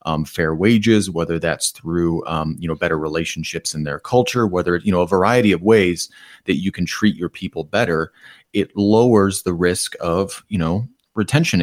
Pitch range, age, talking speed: 85-100 Hz, 30-49, 185 wpm